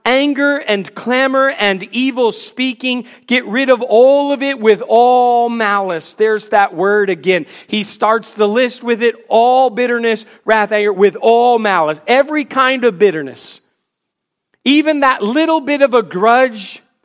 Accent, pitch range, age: American, 195-255 Hz, 40-59